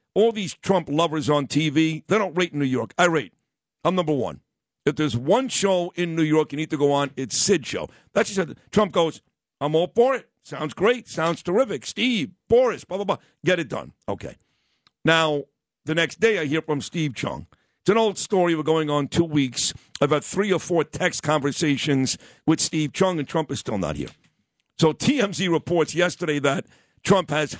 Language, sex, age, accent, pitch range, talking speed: English, male, 60-79, American, 145-185 Hz, 205 wpm